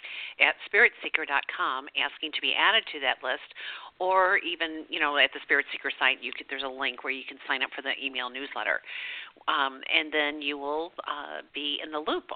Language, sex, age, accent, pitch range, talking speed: English, female, 50-69, American, 140-175 Hz, 205 wpm